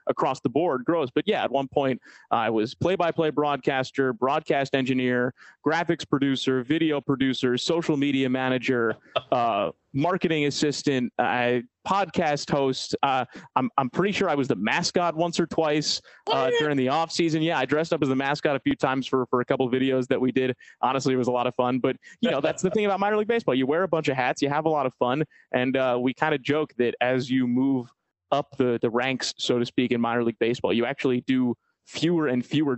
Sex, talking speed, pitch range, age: male, 225 wpm, 125-155 Hz, 30-49